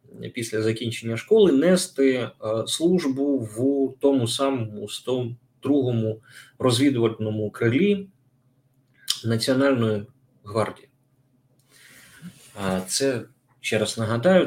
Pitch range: 115-140 Hz